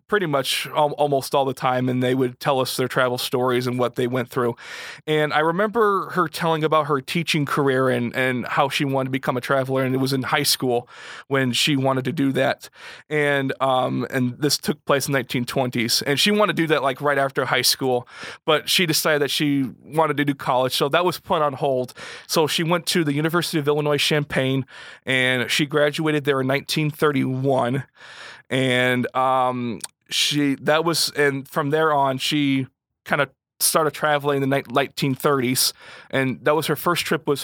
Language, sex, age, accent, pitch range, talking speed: English, male, 20-39, American, 125-150 Hz, 195 wpm